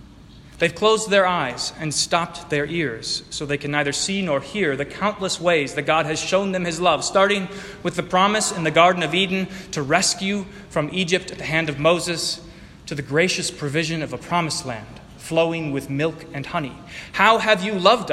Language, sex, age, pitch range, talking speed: English, male, 30-49, 145-185 Hz, 200 wpm